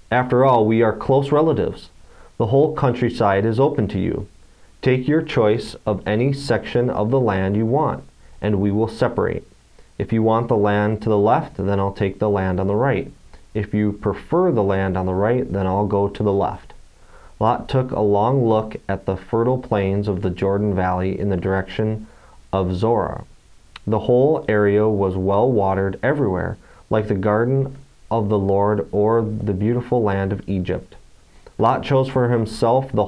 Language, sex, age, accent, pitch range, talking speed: English, male, 30-49, American, 100-120 Hz, 185 wpm